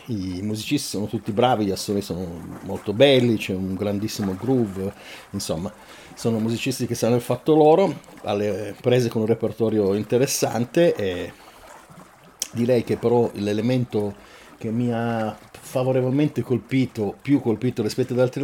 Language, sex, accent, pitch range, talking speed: Italian, male, native, 105-125 Hz, 140 wpm